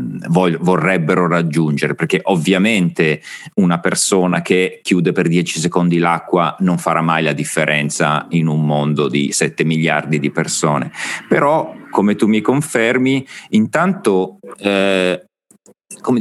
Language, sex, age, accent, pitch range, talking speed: Italian, male, 40-59, native, 80-95 Hz, 120 wpm